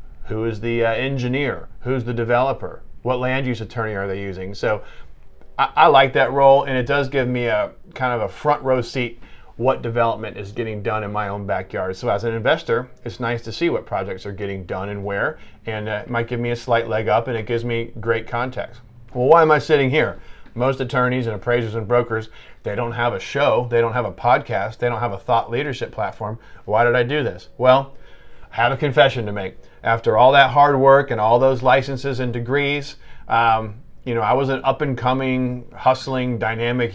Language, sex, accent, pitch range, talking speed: English, male, American, 110-125 Hz, 220 wpm